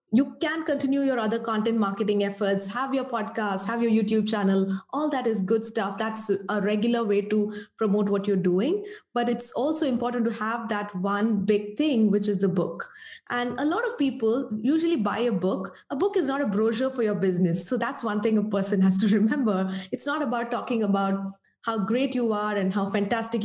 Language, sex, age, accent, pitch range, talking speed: English, female, 20-39, Indian, 200-250 Hz, 210 wpm